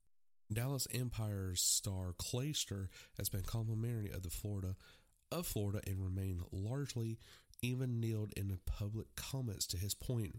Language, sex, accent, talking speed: English, male, American, 140 wpm